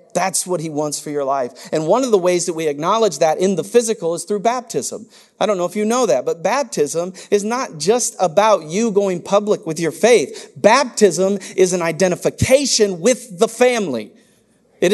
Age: 40-59